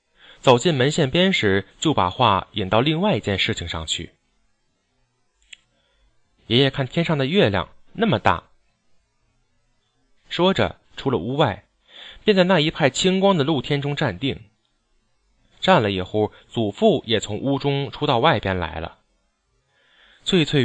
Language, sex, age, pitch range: Chinese, male, 20-39, 100-150 Hz